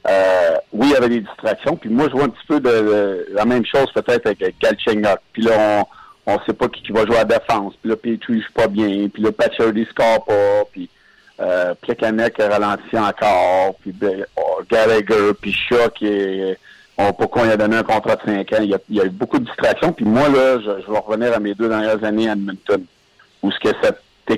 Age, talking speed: 50-69, 235 wpm